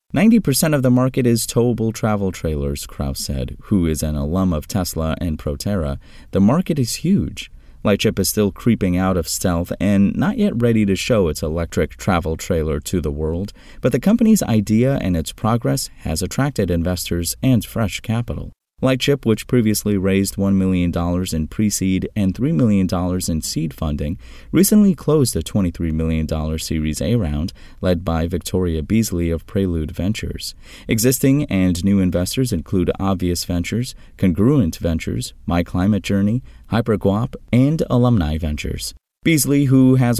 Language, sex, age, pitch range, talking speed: English, male, 30-49, 85-115 Hz, 150 wpm